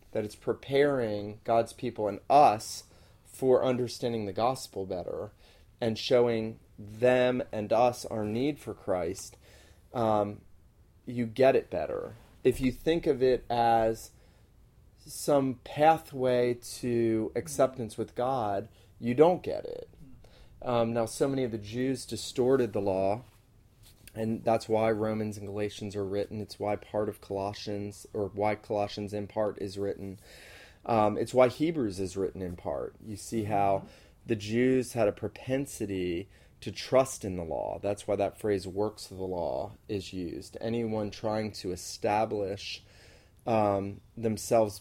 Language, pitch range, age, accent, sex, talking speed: English, 100-115 Hz, 30-49, American, male, 145 wpm